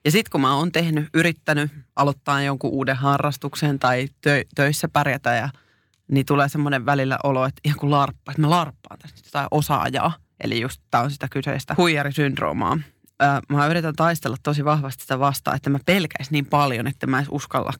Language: Finnish